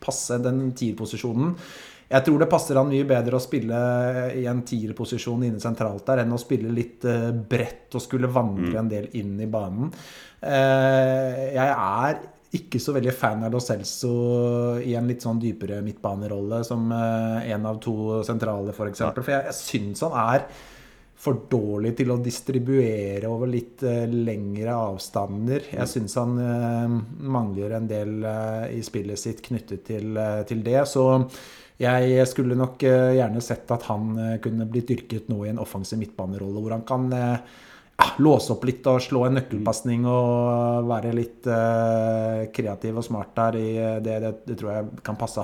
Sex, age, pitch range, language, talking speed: male, 30-49, 110-130 Hz, English, 165 wpm